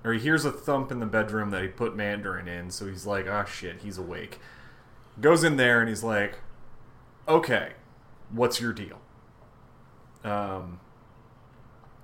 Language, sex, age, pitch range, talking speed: English, male, 30-49, 100-125 Hz, 155 wpm